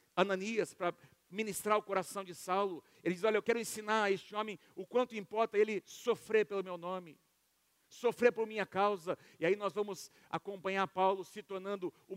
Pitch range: 175-225 Hz